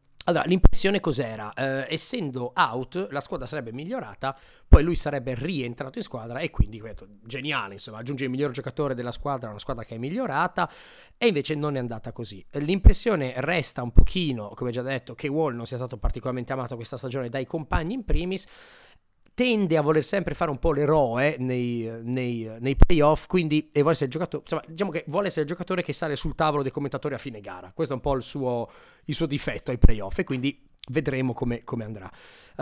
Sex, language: male, Italian